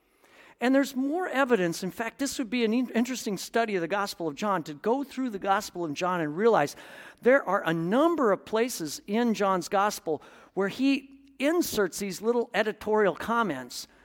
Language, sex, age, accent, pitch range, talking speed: English, male, 50-69, American, 165-230 Hz, 180 wpm